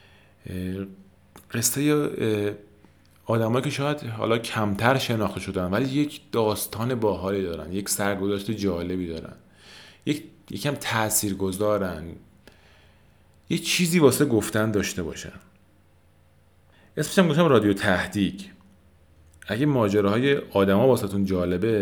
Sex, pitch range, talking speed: male, 90-120 Hz, 100 wpm